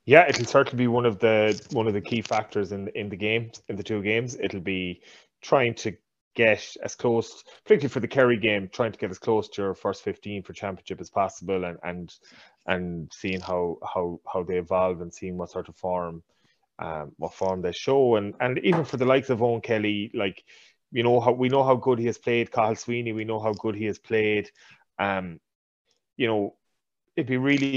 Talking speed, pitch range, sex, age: 215 wpm, 95-120 Hz, male, 30-49